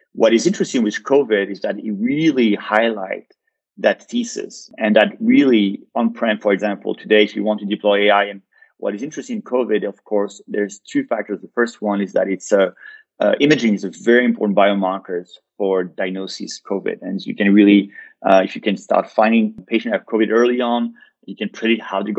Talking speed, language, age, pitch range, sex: 200 wpm, English, 30-49, 100-125 Hz, male